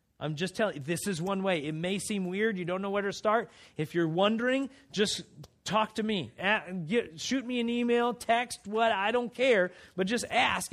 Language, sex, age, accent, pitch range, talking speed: English, male, 30-49, American, 145-200 Hz, 205 wpm